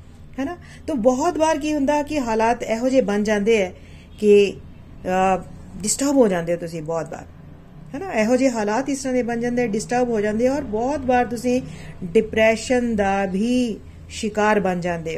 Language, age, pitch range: Punjabi, 40-59, 190-255 Hz